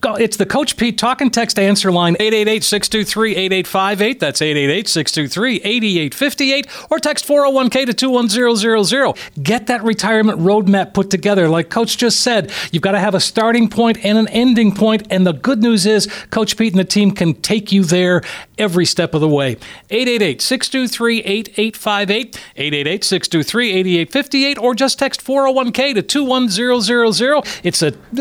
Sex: male